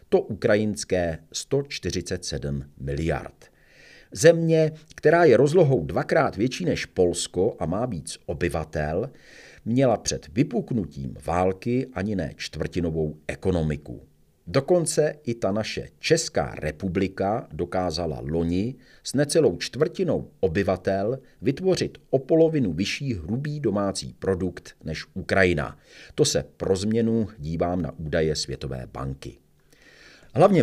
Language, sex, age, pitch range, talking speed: Czech, male, 50-69, 80-130 Hz, 110 wpm